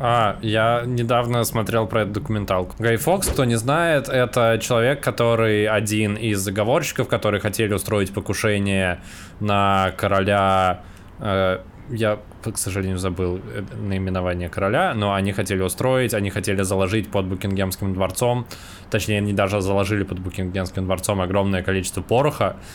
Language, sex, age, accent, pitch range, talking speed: Russian, male, 20-39, native, 95-110 Hz, 130 wpm